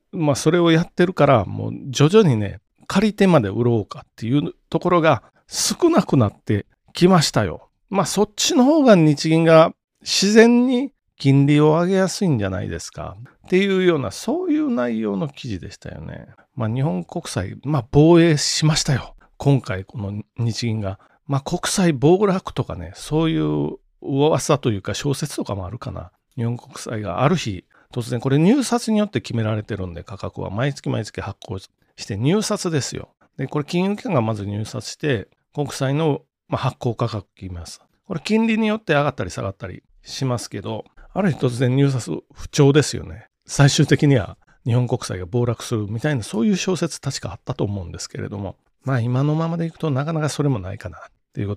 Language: Japanese